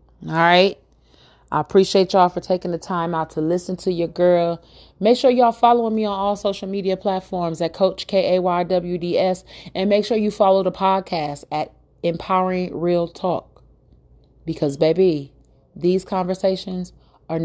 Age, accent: 30-49, American